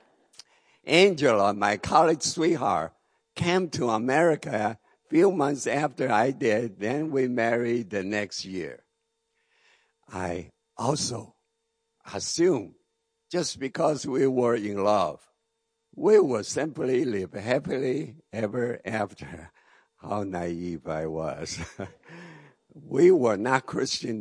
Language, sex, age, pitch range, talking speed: English, male, 60-79, 105-170 Hz, 105 wpm